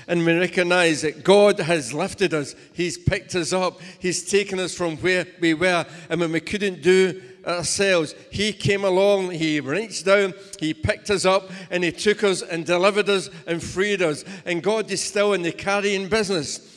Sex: male